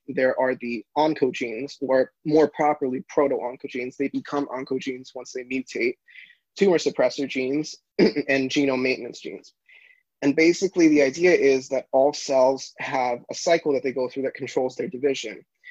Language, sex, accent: English, male, American